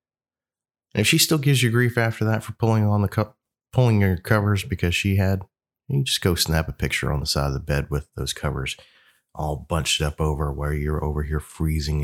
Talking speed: 220 wpm